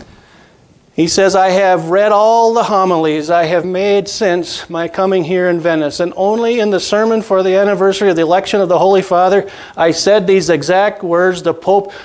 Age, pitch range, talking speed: 50-69, 175-210 Hz, 195 wpm